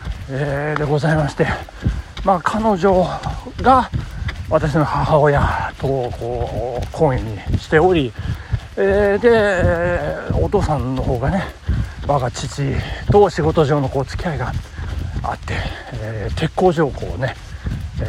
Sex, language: male, Japanese